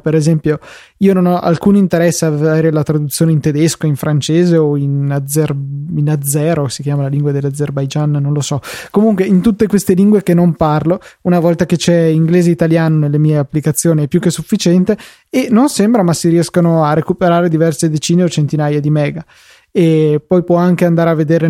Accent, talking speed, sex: native, 200 wpm, male